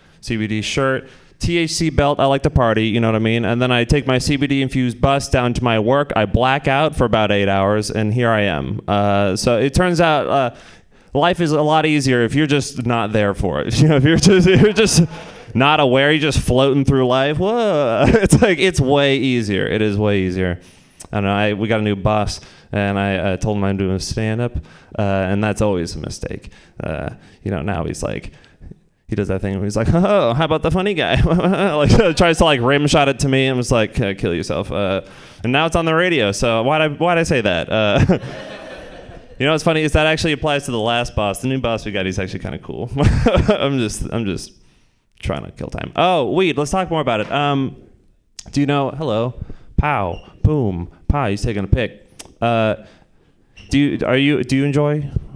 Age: 20-39